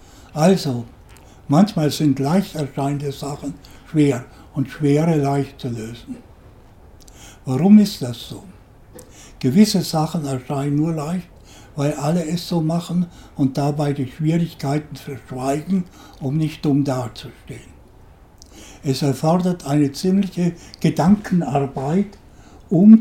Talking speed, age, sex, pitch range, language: 105 wpm, 60-79, male, 125-165 Hz, German